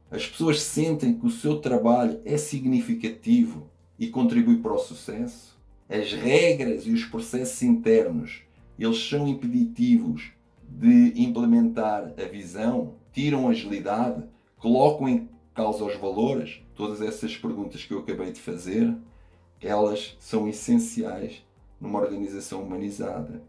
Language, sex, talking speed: Portuguese, male, 125 wpm